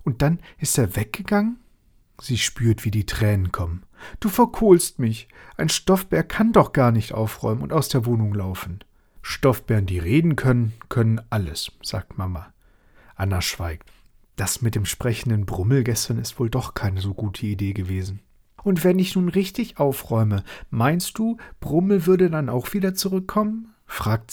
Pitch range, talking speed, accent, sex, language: 100-135 Hz, 160 wpm, German, male, German